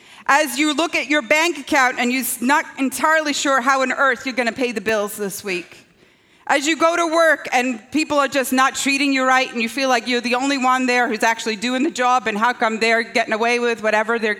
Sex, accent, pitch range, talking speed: female, American, 210-275 Hz, 245 wpm